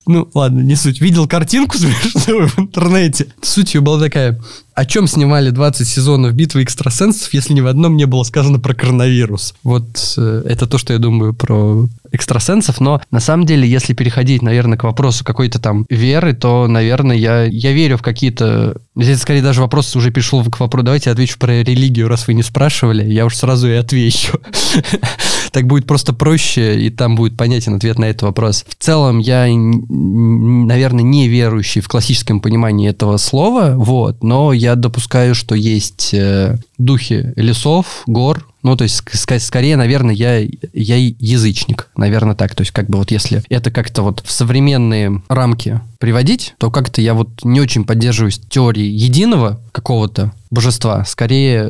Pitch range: 110-135 Hz